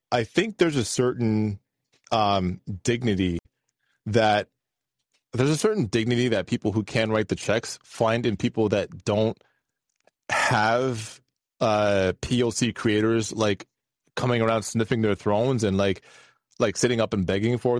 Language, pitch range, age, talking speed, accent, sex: English, 105-125 Hz, 20-39, 140 wpm, American, male